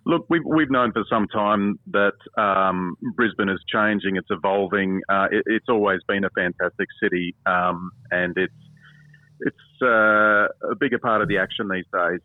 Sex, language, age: male, English, 40-59